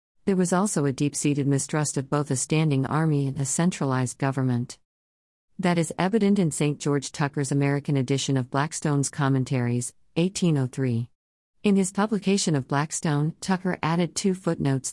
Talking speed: 155 wpm